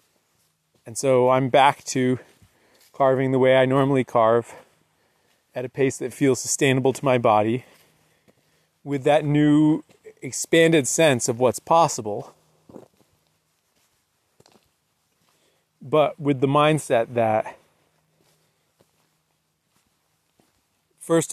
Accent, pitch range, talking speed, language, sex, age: American, 120-155 Hz, 95 wpm, English, male, 30-49